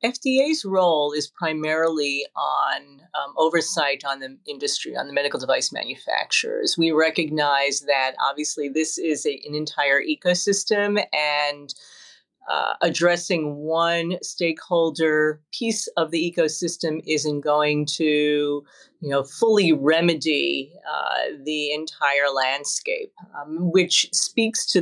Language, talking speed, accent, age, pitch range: English, 110 wpm, American, 40-59, 145-180 Hz